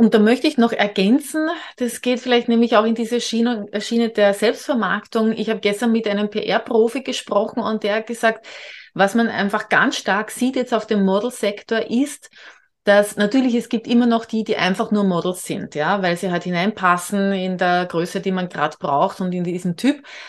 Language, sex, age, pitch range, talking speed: German, female, 30-49, 190-230 Hz, 195 wpm